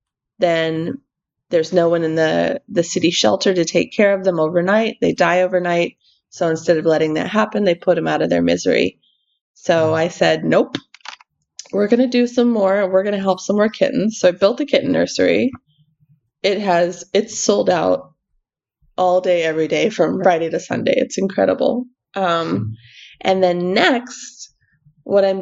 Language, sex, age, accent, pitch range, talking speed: English, female, 20-39, American, 160-195 Hz, 175 wpm